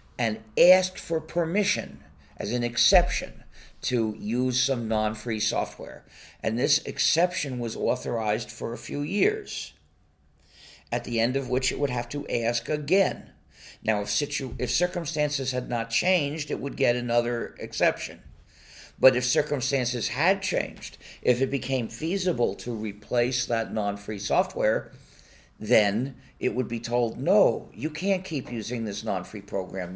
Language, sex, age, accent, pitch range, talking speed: Danish, male, 50-69, American, 110-140 Hz, 140 wpm